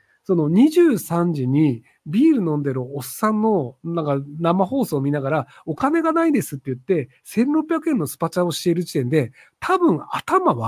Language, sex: Japanese, male